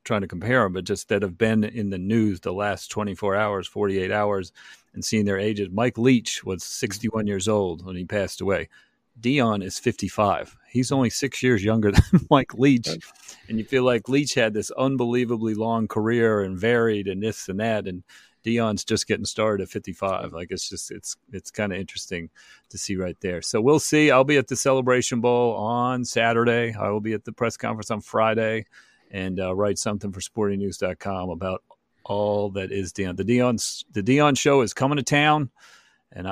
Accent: American